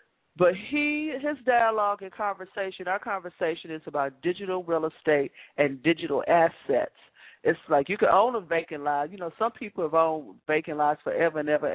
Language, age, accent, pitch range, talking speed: English, 40-59, American, 145-180 Hz, 180 wpm